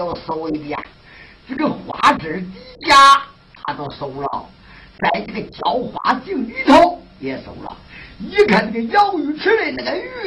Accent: American